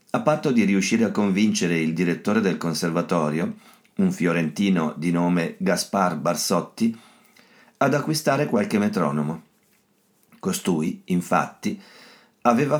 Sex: male